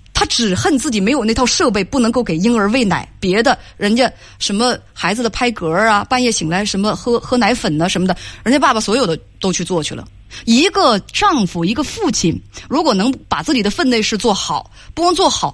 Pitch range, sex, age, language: 175-250 Hz, female, 20-39, Chinese